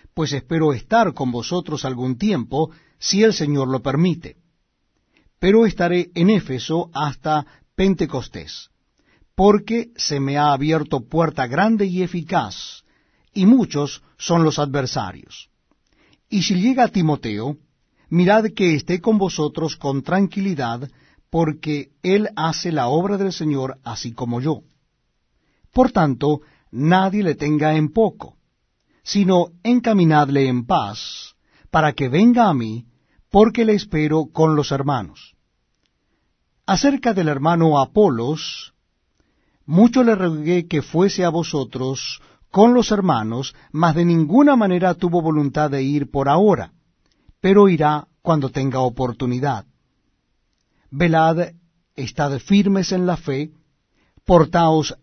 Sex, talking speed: male, 120 wpm